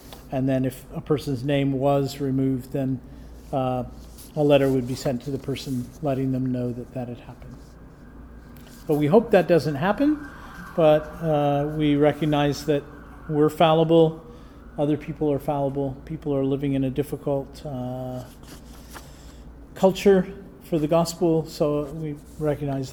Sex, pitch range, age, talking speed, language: male, 140-170 Hz, 40-59, 145 wpm, English